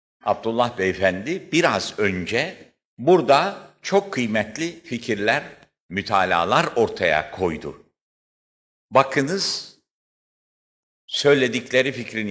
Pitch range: 100-165 Hz